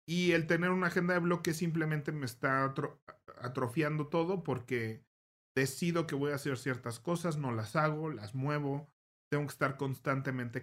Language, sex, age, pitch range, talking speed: Spanish, male, 40-59, 115-155 Hz, 170 wpm